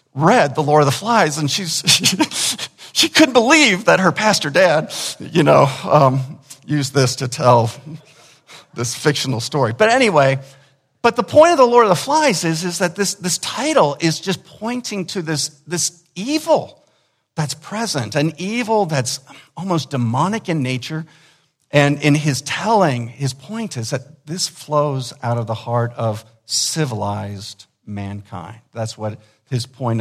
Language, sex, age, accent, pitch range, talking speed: English, male, 50-69, American, 120-160 Hz, 160 wpm